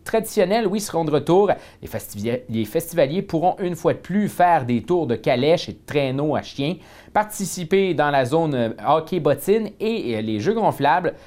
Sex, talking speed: male, 170 wpm